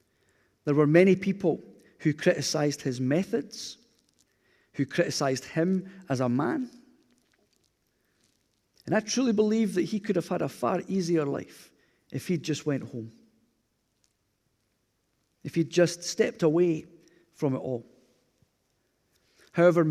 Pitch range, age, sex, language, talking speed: 125-170 Hz, 40-59, male, English, 125 wpm